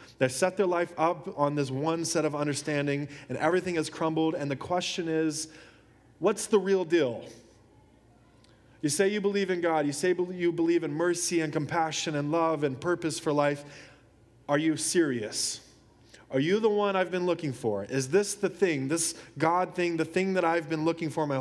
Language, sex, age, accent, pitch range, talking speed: English, male, 20-39, American, 120-155 Hz, 195 wpm